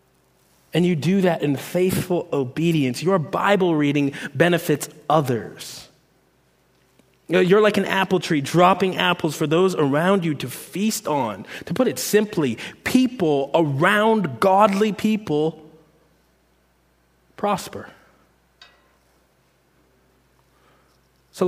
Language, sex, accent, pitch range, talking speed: English, male, American, 145-210 Hz, 100 wpm